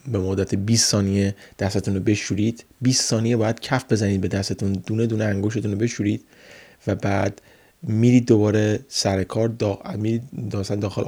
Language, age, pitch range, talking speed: Persian, 30-49, 100-115 Hz, 145 wpm